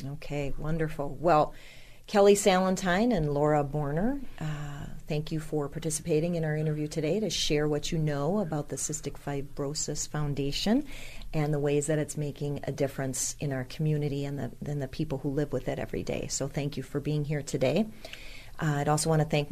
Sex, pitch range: female, 145-175 Hz